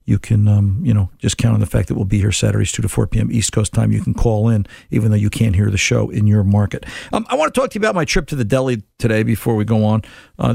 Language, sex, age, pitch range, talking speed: English, male, 50-69, 115-145 Hz, 315 wpm